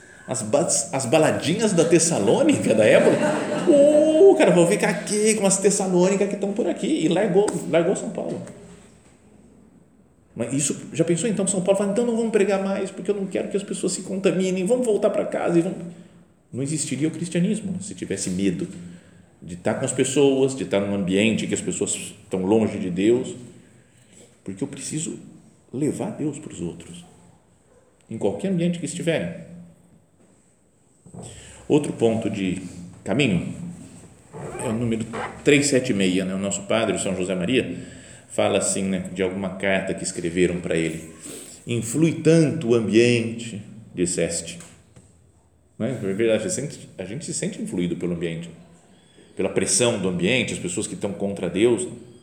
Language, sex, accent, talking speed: Portuguese, male, Brazilian, 165 wpm